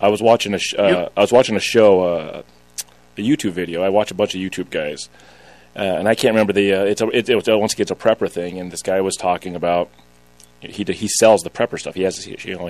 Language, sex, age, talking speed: English, male, 30-49, 275 wpm